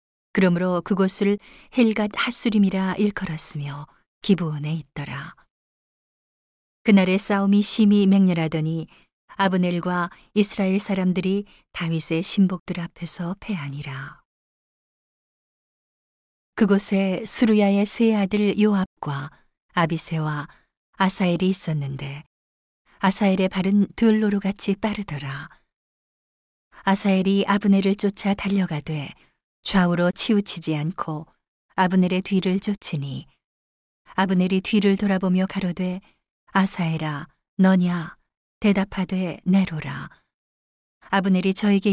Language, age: Korean, 40-59